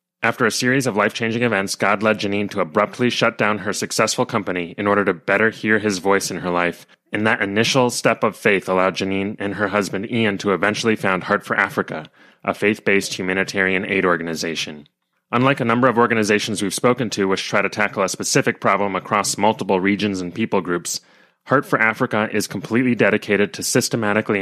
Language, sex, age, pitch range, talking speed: English, male, 30-49, 95-110 Hz, 190 wpm